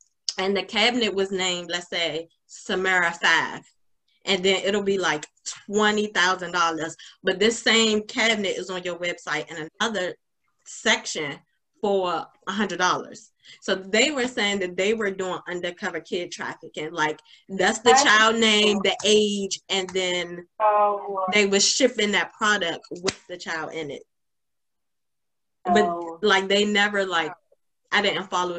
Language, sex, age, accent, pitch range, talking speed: English, female, 20-39, American, 165-210 Hz, 140 wpm